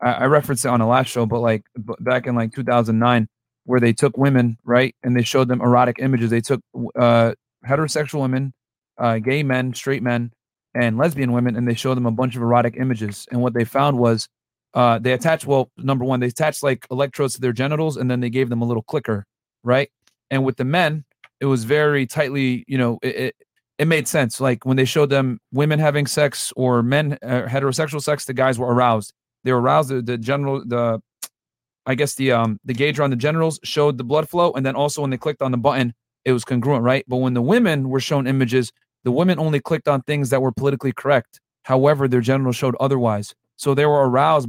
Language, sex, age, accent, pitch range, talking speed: English, male, 30-49, American, 120-140 Hz, 220 wpm